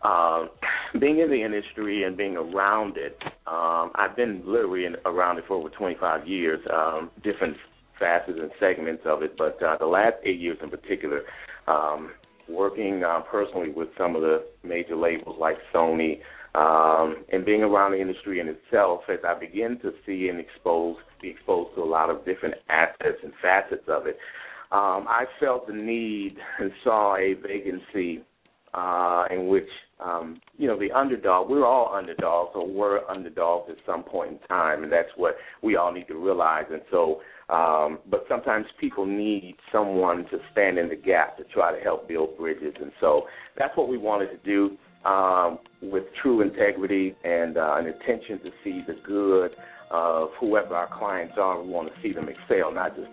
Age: 30-49